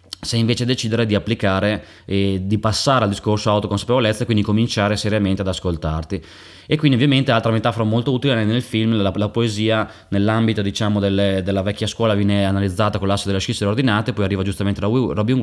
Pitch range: 95-110 Hz